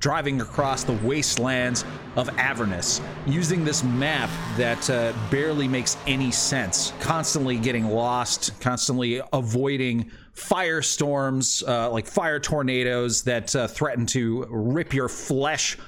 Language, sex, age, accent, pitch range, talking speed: English, male, 30-49, American, 115-140 Hz, 120 wpm